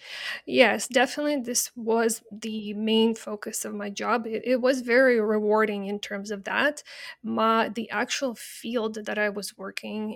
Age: 20-39